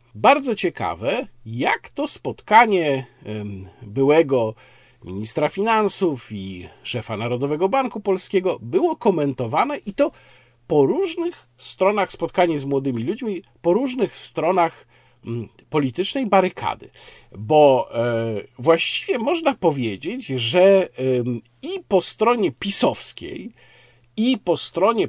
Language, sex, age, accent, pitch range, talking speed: Polish, male, 50-69, native, 130-205 Hz, 100 wpm